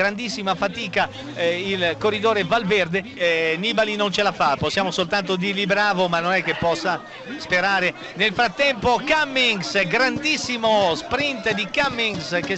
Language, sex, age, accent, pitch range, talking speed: Italian, male, 50-69, native, 215-255 Hz, 145 wpm